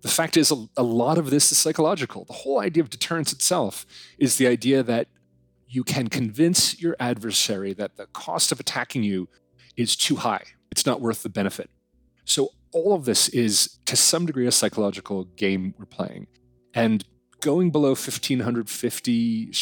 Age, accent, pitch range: 30-49, American, 110-150 Hz